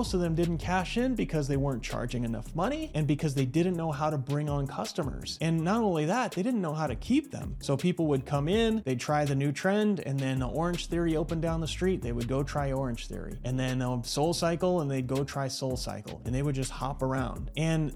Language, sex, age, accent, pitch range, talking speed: English, male, 30-49, American, 130-165 Hz, 245 wpm